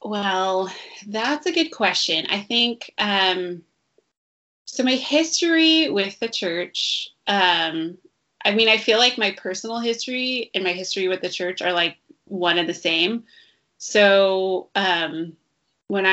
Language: English